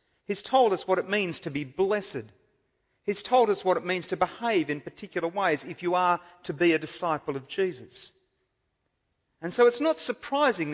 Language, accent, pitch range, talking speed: English, Australian, 130-195 Hz, 190 wpm